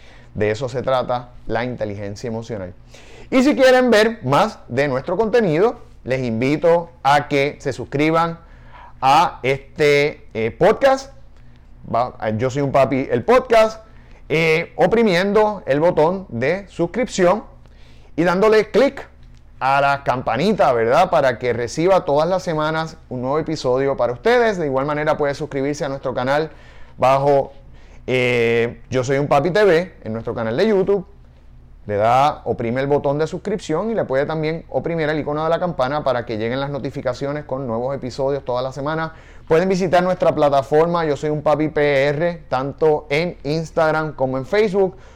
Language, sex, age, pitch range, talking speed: Spanish, male, 30-49, 125-165 Hz, 155 wpm